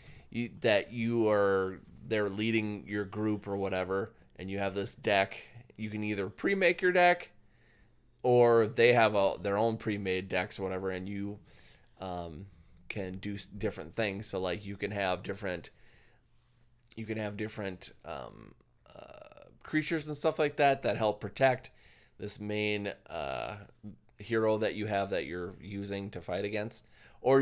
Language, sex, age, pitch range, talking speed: English, male, 20-39, 95-120 Hz, 155 wpm